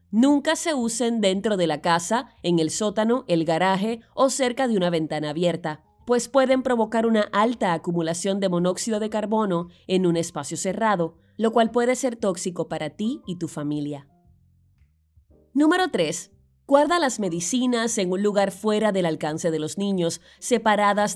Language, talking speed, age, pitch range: Spanish, 160 wpm, 20-39, 170-230 Hz